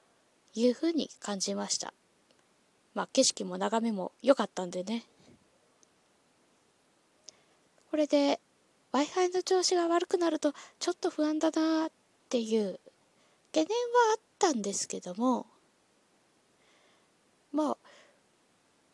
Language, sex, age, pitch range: Japanese, female, 20-39, 230-345 Hz